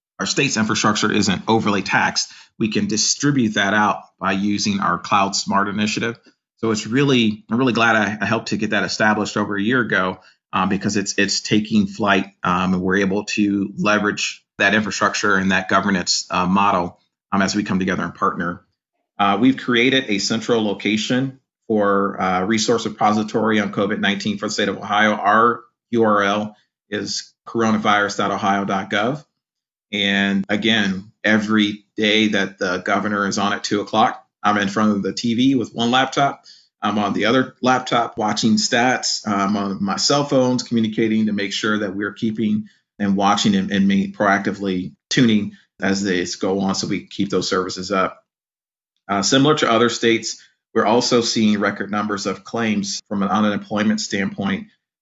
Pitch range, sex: 100-115 Hz, male